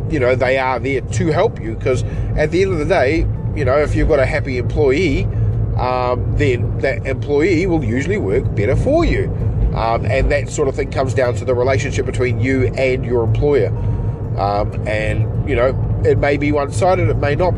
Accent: Australian